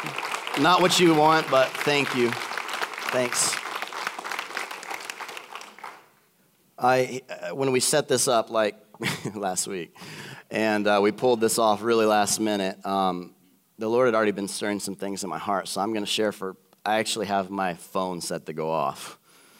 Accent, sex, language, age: American, male, English, 30-49